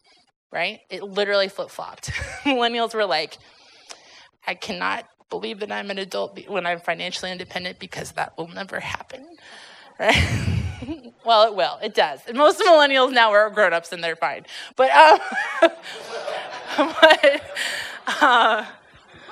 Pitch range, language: 175-225 Hz, English